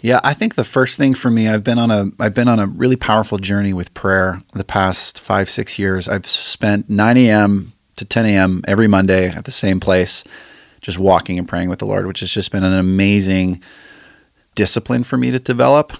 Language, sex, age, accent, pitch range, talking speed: English, male, 30-49, American, 95-115 Hz, 215 wpm